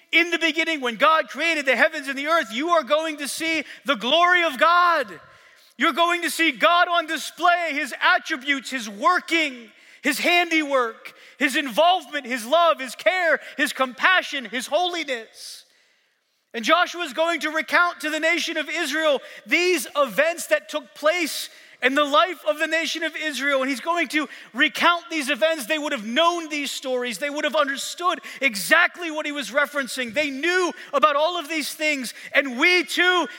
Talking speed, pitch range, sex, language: 180 wpm, 260-325 Hz, male, English